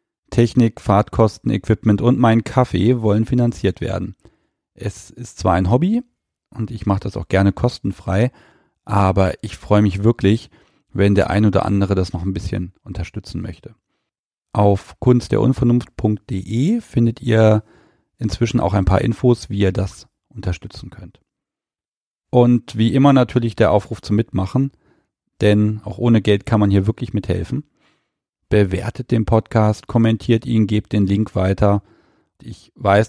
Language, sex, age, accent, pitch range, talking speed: German, male, 40-59, German, 95-120 Hz, 145 wpm